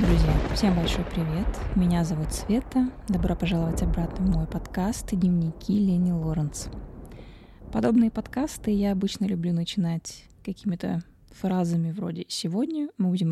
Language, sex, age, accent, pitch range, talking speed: Russian, female, 20-39, native, 165-200 Hz, 125 wpm